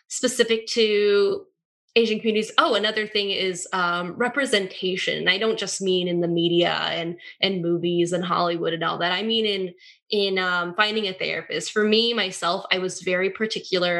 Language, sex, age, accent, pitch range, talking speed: English, female, 10-29, American, 175-220 Hz, 170 wpm